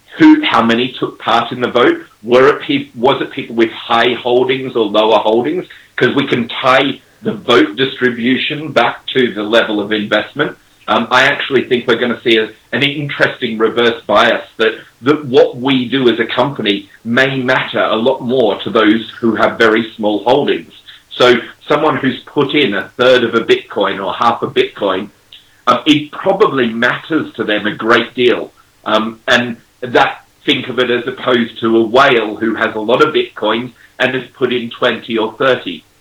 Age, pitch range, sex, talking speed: 40-59, 110-135 Hz, male, 185 wpm